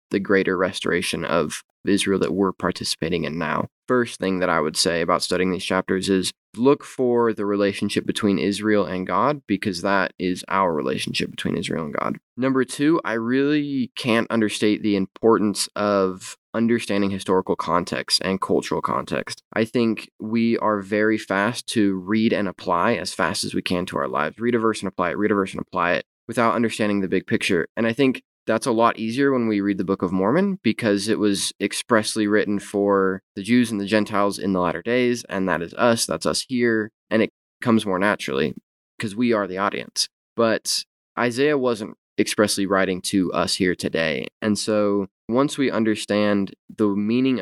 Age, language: 20-39, English